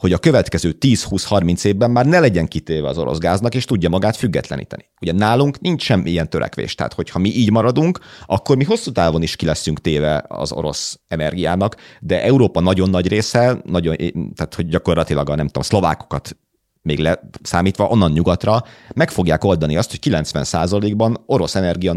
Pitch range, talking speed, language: 80-115 Hz, 175 wpm, Hungarian